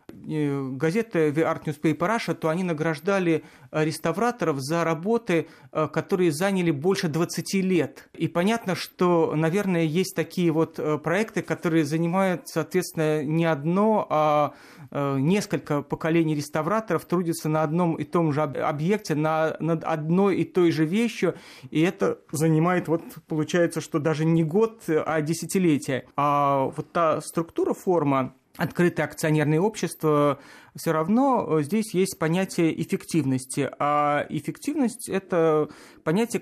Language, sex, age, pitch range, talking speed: Russian, male, 40-59, 155-185 Hz, 125 wpm